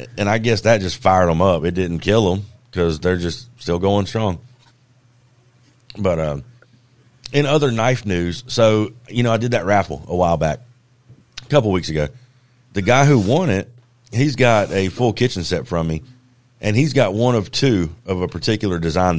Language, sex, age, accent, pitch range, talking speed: English, male, 30-49, American, 90-125 Hz, 190 wpm